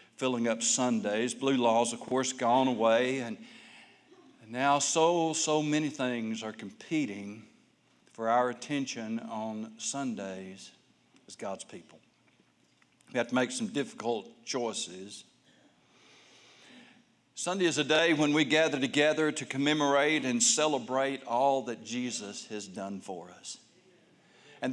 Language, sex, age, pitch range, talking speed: English, male, 60-79, 140-200 Hz, 125 wpm